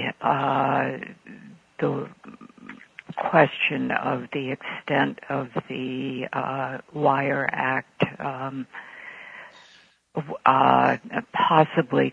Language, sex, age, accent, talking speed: English, female, 60-79, American, 70 wpm